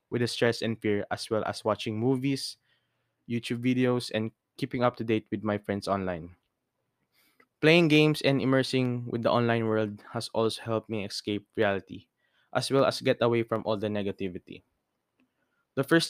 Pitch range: 110-135 Hz